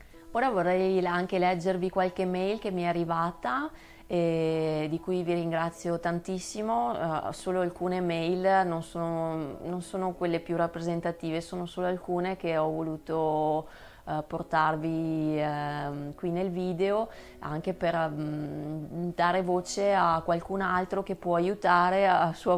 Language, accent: Italian, native